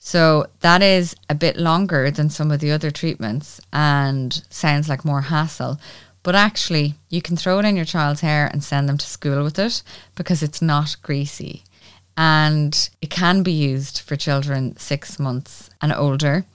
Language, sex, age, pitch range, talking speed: English, female, 20-39, 140-175 Hz, 180 wpm